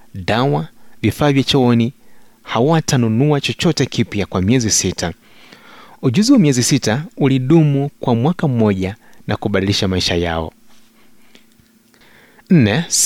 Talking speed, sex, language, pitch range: 105 wpm, male, Swahili, 110-140 Hz